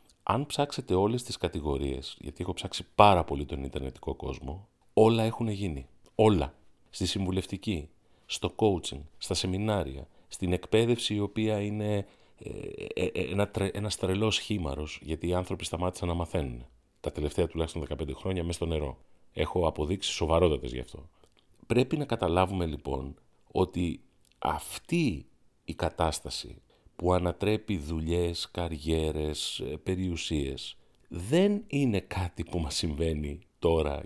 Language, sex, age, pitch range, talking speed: Greek, male, 40-59, 80-105 Hz, 130 wpm